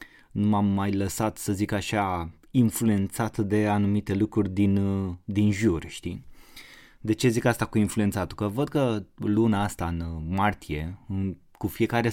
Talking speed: 155 wpm